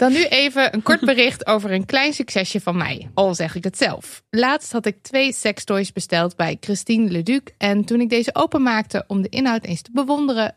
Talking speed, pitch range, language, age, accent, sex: 210 wpm, 180-230 Hz, Dutch, 20-39, Dutch, female